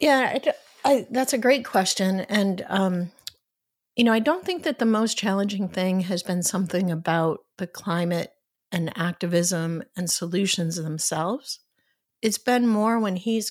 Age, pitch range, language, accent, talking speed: 50-69, 185-230 Hz, English, American, 155 wpm